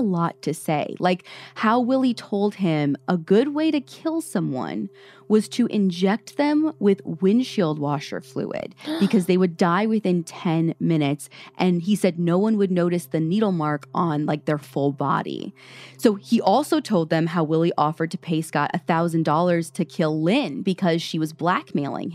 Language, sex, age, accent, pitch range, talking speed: English, female, 20-39, American, 155-220 Hz, 170 wpm